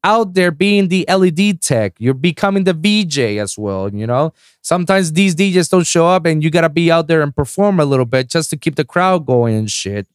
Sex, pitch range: male, 135-180 Hz